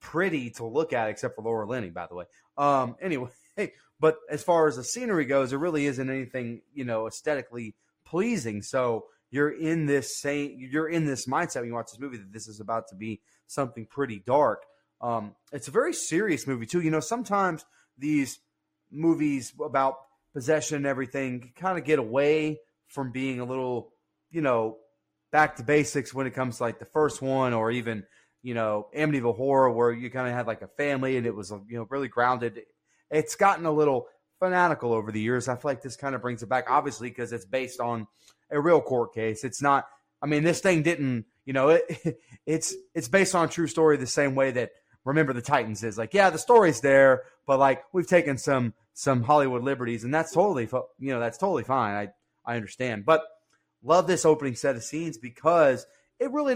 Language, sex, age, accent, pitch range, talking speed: English, male, 30-49, American, 120-150 Hz, 205 wpm